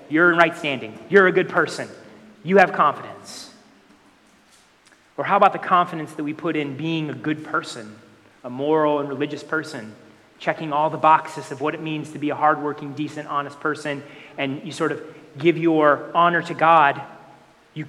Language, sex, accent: English, male, American